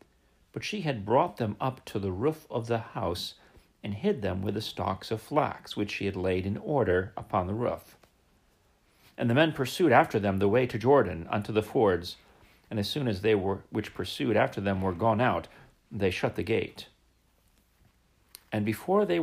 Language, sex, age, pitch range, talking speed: English, male, 40-59, 105-150 Hz, 195 wpm